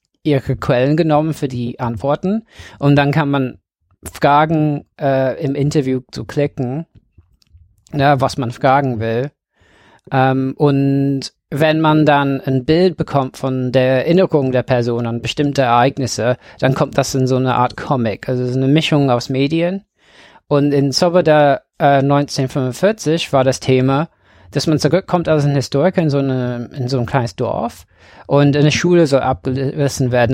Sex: male